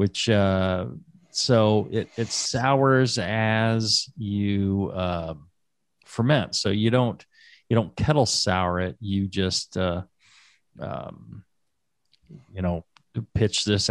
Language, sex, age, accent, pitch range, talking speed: English, male, 40-59, American, 95-125 Hz, 110 wpm